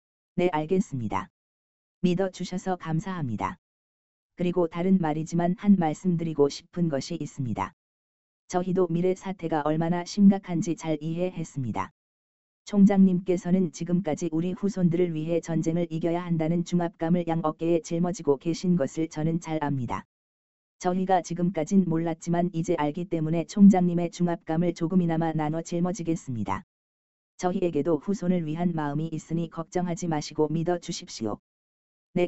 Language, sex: Korean, female